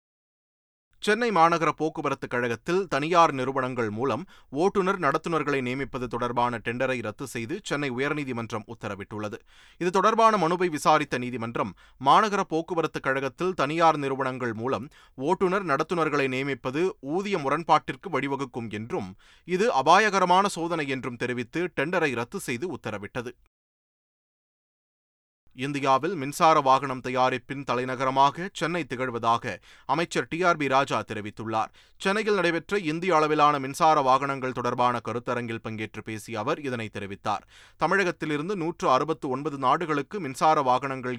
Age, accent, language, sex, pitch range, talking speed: 30-49, native, Tamil, male, 120-160 Hz, 110 wpm